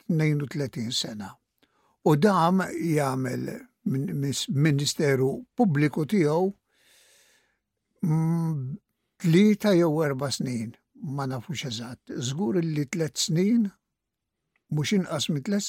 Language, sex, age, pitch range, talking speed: English, male, 60-79, 140-200 Hz, 90 wpm